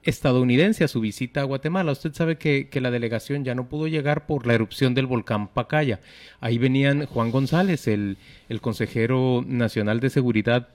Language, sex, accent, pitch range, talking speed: Spanish, male, Mexican, 110-135 Hz, 180 wpm